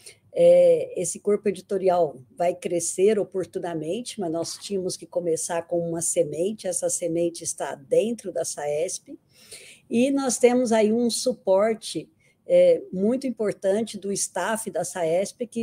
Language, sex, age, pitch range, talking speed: Portuguese, female, 60-79, 175-205 Hz, 135 wpm